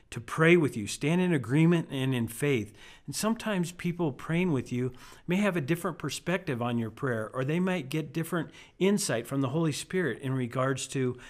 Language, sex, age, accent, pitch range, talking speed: English, male, 50-69, American, 120-150 Hz, 195 wpm